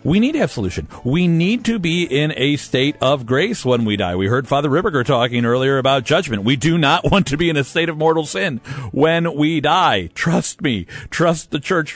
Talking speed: 225 wpm